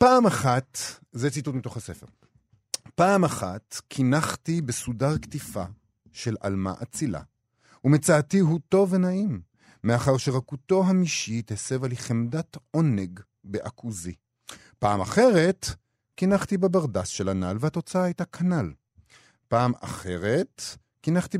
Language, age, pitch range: Hebrew, 50-69, 110-160 Hz